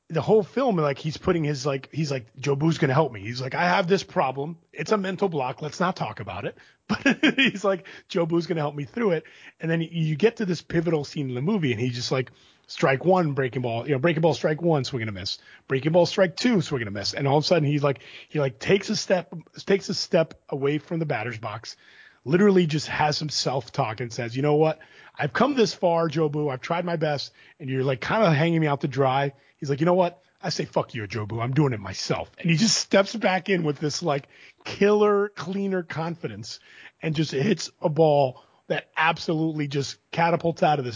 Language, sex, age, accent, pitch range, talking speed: English, male, 30-49, American, 135-180 Hz, 250 wpm